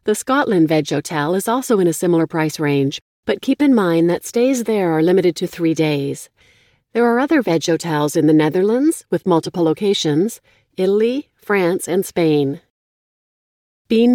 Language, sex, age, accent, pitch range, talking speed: English, female, 40-59, American, 155-215 Hz, 165 wpm